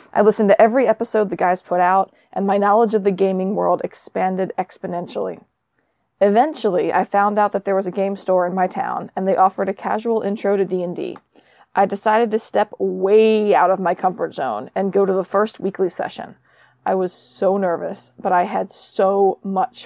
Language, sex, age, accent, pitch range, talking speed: English, female, 20-39, American, 185-215 Hz, 195 wpm